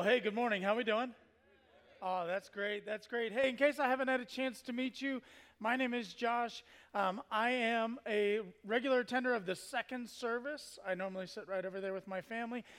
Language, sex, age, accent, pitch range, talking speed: English, male, 30-49, American, 200-260 Hz, 215 wpm